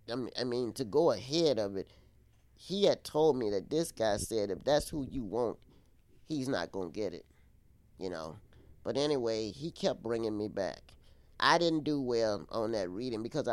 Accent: American